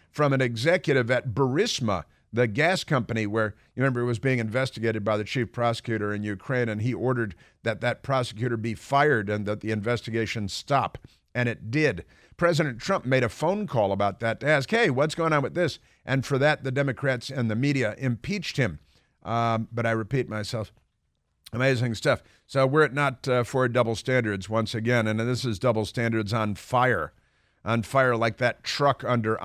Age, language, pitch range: 50-69, English, 110-135 Hz